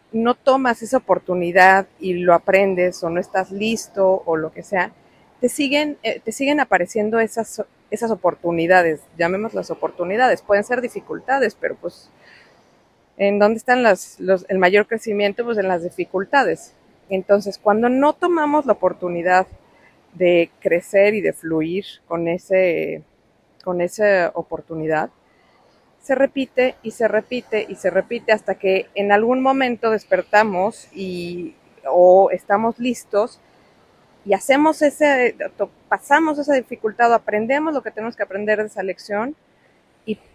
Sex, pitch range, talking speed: female, 185-235 Hz, 140 wpm